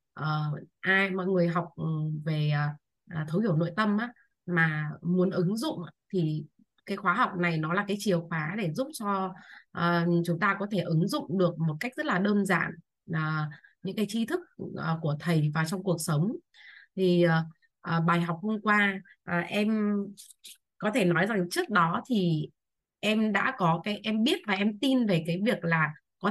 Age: 20-39